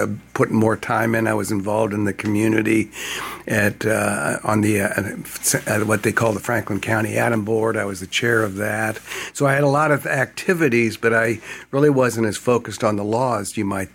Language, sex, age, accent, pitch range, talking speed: English, male, 60-79, American, 105-125 Hz, 205 wpm